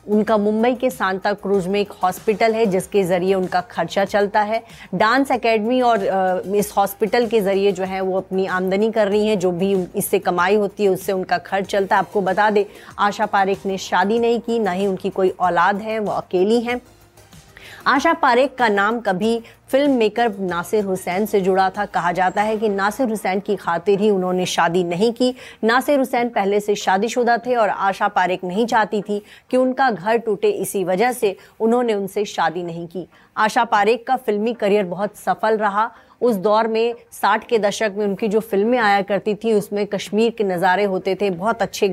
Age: 30-49